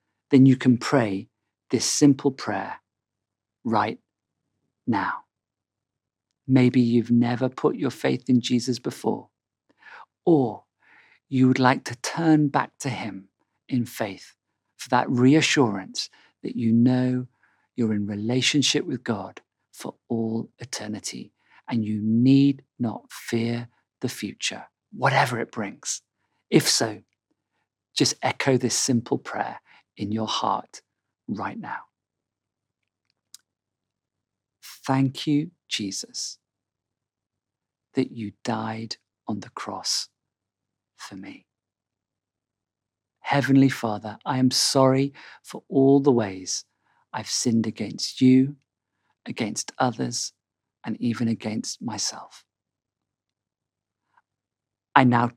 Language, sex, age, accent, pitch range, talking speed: English, male, 50-69, British, 110-130 Hz, 105 wpm